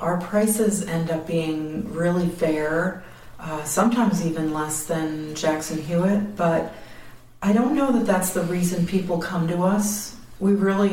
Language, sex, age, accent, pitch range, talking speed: English, female, 40-59, American, 165-205 Hz, 155 wpm